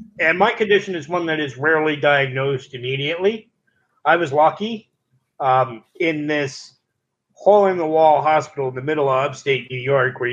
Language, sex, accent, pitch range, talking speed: English, male, American, 130-180 Hz, 150 wpm